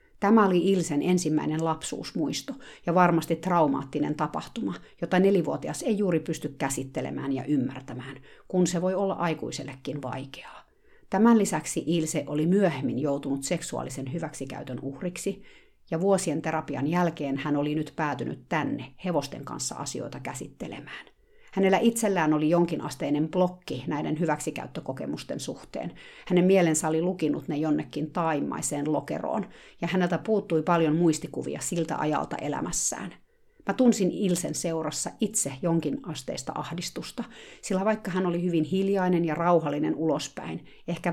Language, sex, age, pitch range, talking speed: Finnish, female, 50-69, 150-180 Hz, 125 wpm